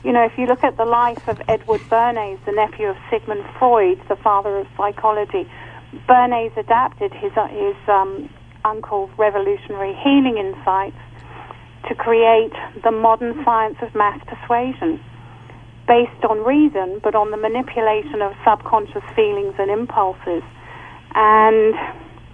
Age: 40-59